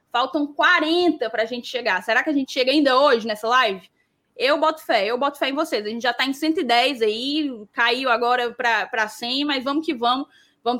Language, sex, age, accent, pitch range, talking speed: Portuguese, female, 10-29, Brazilian, 250-330 Hz, 215 wpm